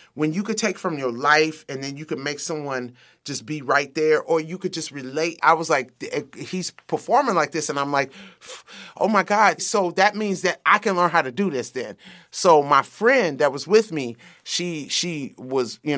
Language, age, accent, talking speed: English, 30-49, American, 220 wpm